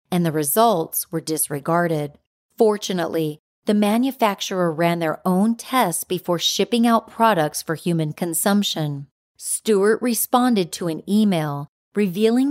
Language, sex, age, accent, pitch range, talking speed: English, female, 40-59, American, 165-220 Hz, 120 wpm